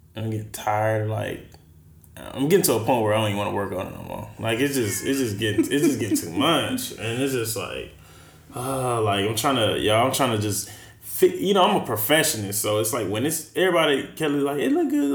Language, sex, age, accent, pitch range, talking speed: English, male, 20-39, American, 100-125 Hz, 250 wpm